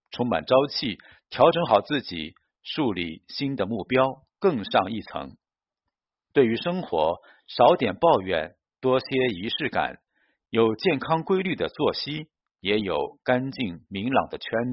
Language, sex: Chinese, male